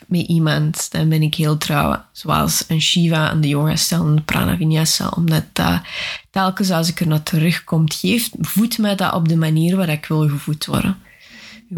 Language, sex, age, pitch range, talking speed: Dutch, female, 20-39, 160-190 Hz, 185 wpm